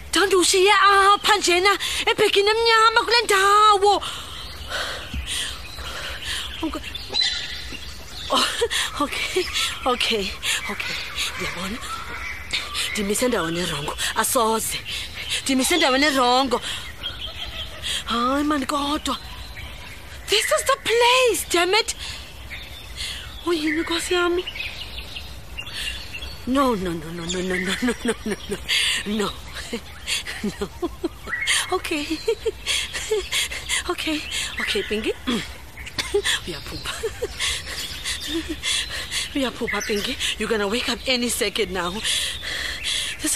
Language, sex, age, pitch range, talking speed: English, female, 30-49, 245-390 Hz, 95 wpm